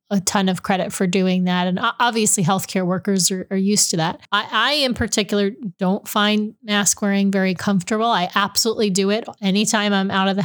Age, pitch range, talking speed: 30-49, 185-215 Hz, 200 wpm